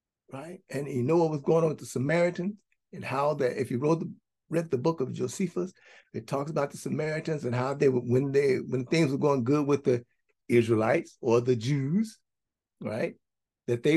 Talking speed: 205 wpm